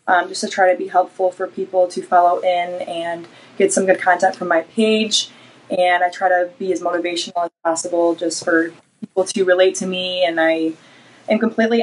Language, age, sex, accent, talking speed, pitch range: English, 20-39, female, American, 205 wpm, 175-190 Hz